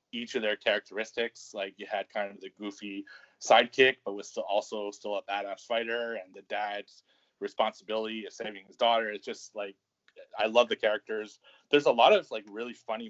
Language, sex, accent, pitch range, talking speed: English, male, American, 100-115 Hz, 190 wpm